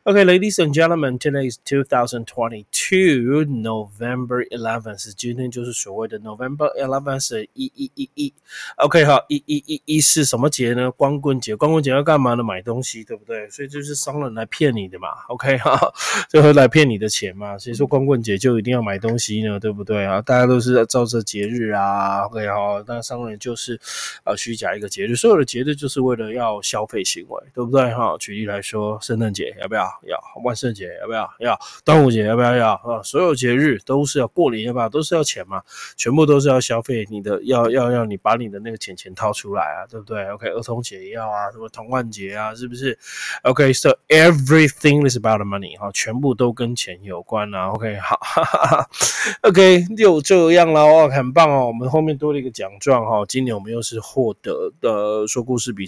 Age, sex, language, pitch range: 20-39, male, Chinese, 110-140 Hz